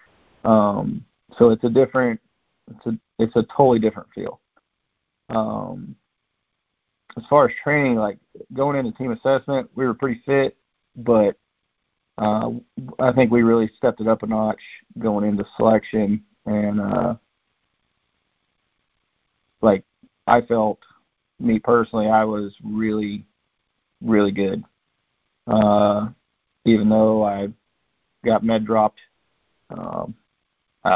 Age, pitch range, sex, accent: 40-59, 105-120 Hz, male, American